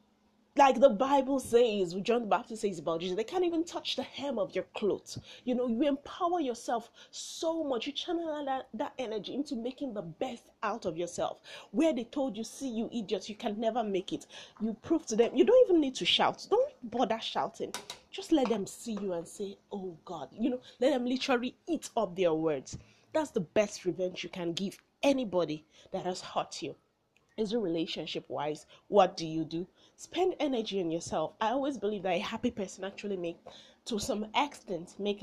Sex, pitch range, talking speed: female, 185-265 Hz, 200 wpm